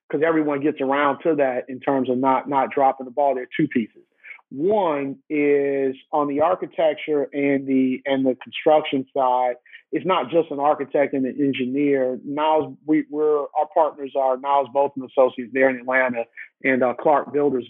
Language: English